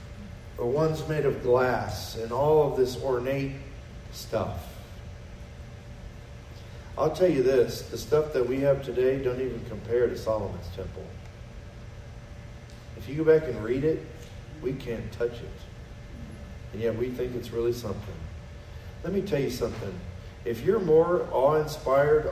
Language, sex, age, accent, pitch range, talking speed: English, male, 40-59, American, 110-150 Hz, 145 wpm